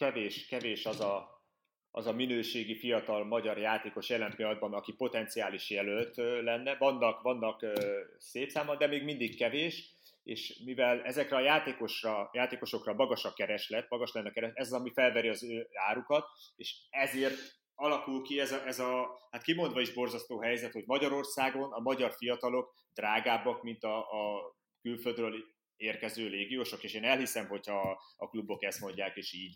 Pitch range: 115-135 Hz